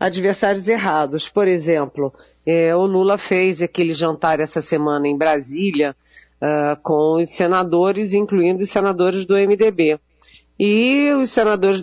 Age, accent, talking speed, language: 50-69, Brazilian, 120 wpm, Portuguese